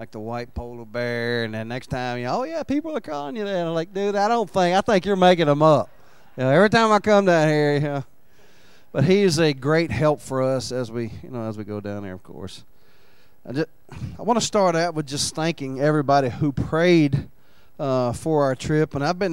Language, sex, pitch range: English, male, 125-165 Hz